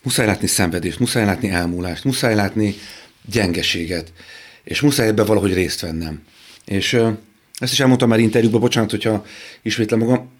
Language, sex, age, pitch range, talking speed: Hungarian, male, 40-59, 95-120 Hz, 150 wpm